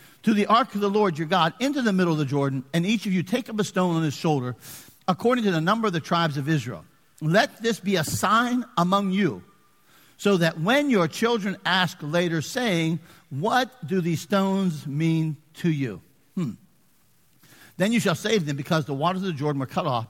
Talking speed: 210 wpm